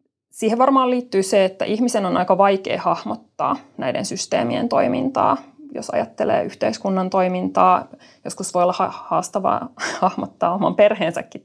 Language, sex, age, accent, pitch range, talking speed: Finnish, female, 20-39, native, 175-215 Hz, 125 wpm